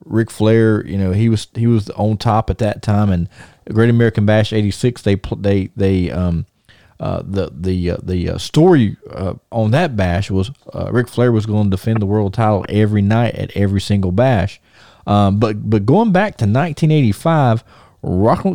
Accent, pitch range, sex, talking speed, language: American, 100-135 Hz, male, 185 wpm, English